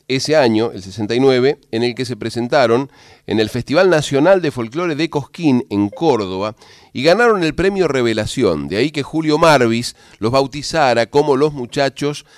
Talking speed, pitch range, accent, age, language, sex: 165 wpm, 115-160 Hz, Argentinian, 40-59, Spanish, male